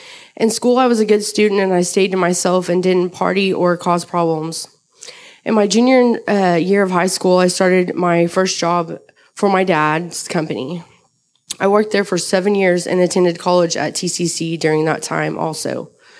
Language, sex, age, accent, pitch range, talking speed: English, female, 20-39, American, 170-205 Hz, 185 wpm